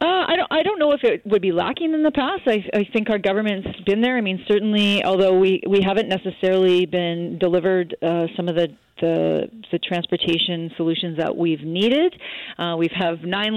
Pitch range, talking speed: 165-195 Hz, 205 wpm